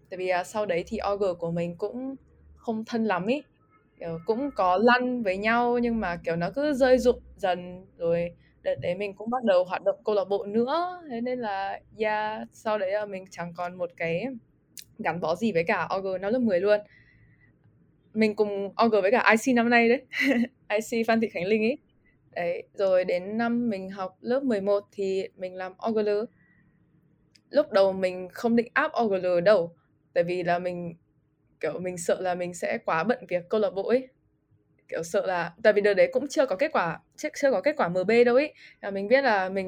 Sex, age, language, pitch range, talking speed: female, 10-29, Vietnamese, 180-240 Hz, 210 wpm